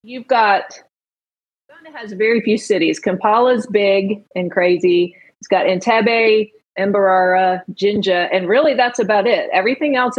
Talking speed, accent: 135 wpm, American